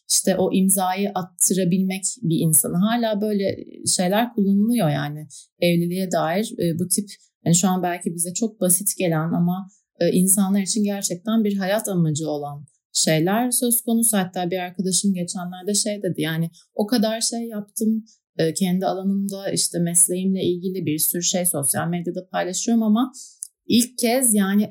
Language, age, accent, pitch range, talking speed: Turkish, 30-49, native, 175-210 Hz, 145 wpm